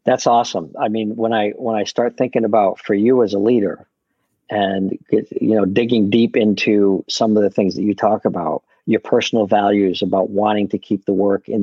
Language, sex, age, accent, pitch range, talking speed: English, male, 50-69, American, 100-120 Hz, 205 wpm